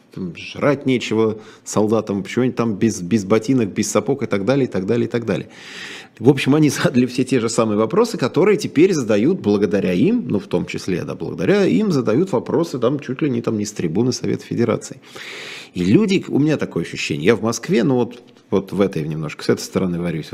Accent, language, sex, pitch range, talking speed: native, Russian, male, 100-130 Hz, 210 wpm